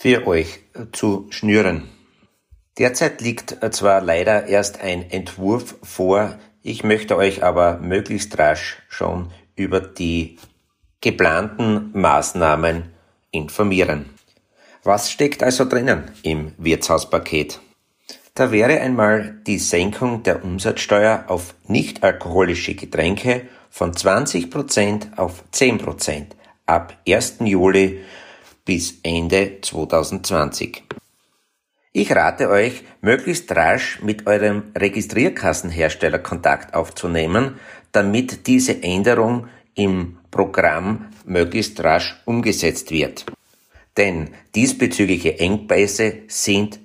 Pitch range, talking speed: 85-110 Hz, 95 wpm